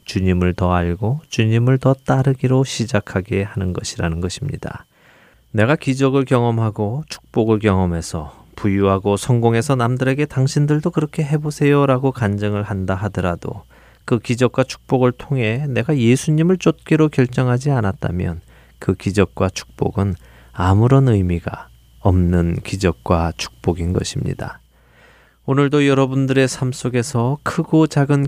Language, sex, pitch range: Korean, male, 95-130 Hz